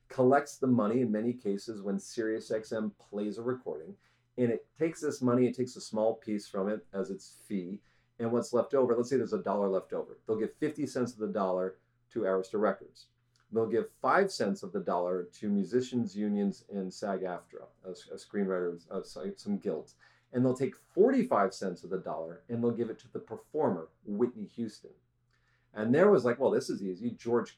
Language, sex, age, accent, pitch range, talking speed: English, male, 40-59, American, 110-130 Hz, 195 wpm